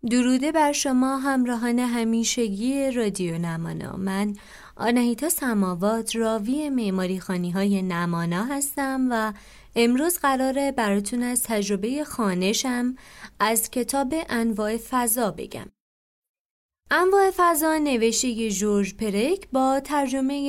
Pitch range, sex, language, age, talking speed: 210-275 Hz, female, Persian, 30-49, 100 wpm